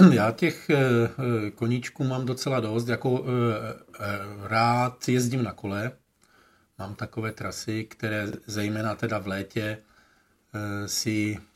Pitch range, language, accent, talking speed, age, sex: 105-120 Hz, Czech, native, 105 wpm, 50-69, male